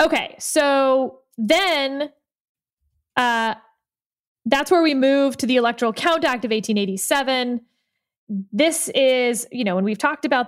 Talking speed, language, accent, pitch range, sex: 130 wpm, English, American, 220-285 Hz, female